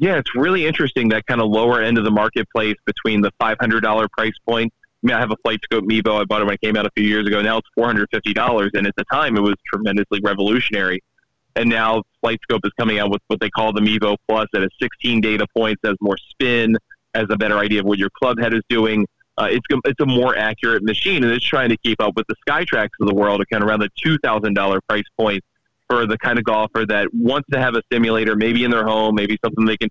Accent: American